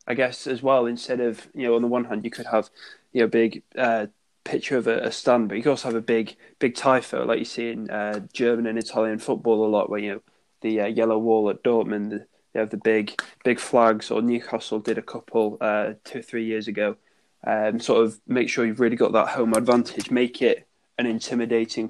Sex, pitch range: male, 110-120 Hz